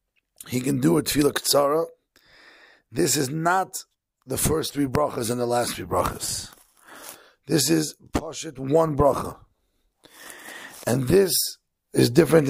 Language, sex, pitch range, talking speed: English, male, 130-160 Hz, 130 wpm